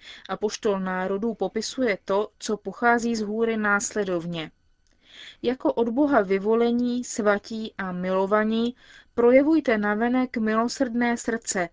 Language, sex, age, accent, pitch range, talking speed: Czech, female, 30-49, native, 190-225 Hz, 105 wpm